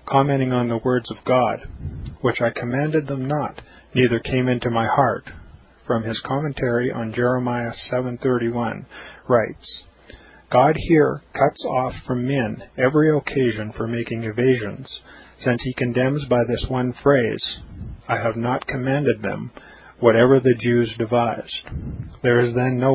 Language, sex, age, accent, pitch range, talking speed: English, male, 40-59, American, 120-135 Hz, 140 wpm